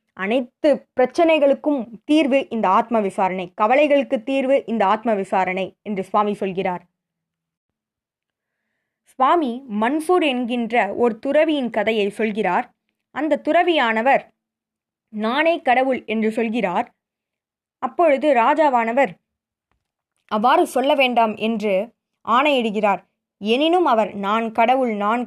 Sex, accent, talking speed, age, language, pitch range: female, native, 95 wpm, 20-39, Tamil, 205-255 Hz